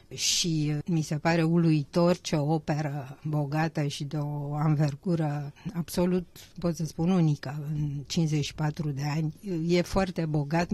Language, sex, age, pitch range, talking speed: Romanian, female, 50-69, 150-165 Hz, 140 wpm